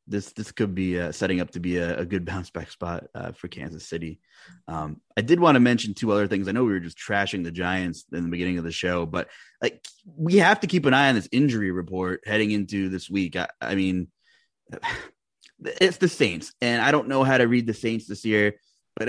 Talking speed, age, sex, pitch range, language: 240 wpm, 20-39, male, 95-130 Hz, English